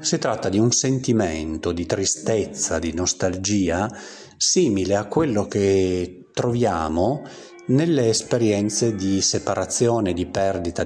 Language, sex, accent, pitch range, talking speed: Italian, male, native, 85-120 Hz, 110 wpm